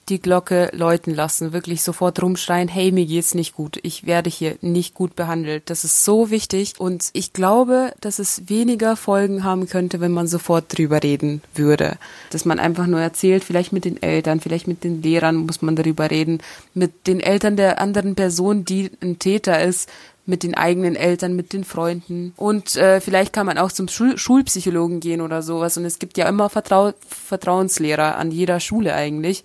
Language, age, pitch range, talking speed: German, 20-39, 175-210 Hz, 190 wpm